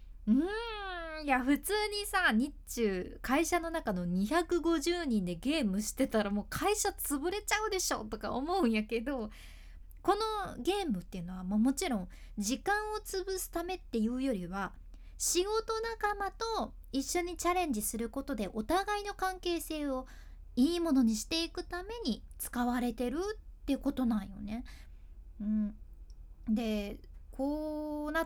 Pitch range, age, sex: 220-360 Hz, 20-39, female